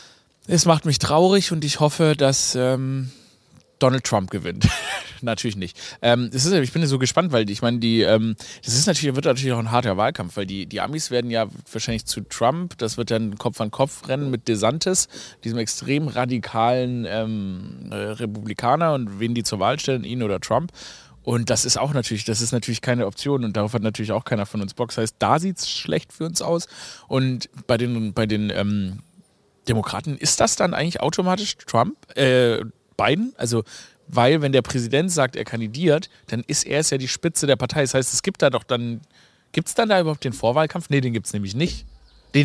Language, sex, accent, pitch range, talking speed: German, male, German, 115-155 Hz, 205 wpm